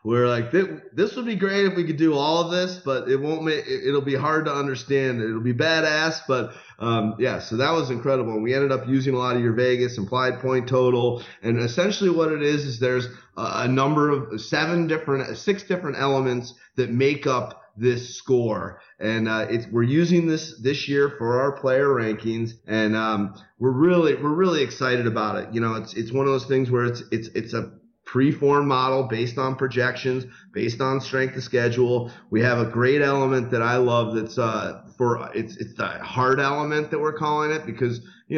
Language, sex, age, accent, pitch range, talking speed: English, male, 30-49, American, 120-140 Hz, 205 wpm